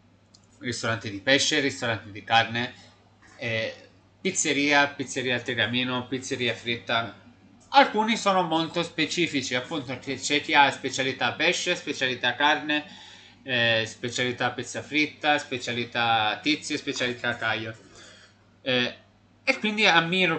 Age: 30-49